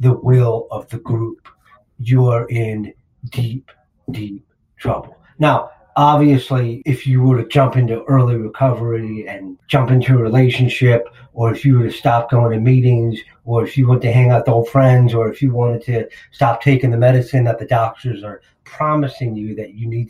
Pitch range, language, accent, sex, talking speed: 115-135 Hz, English, American, male, 190 wpm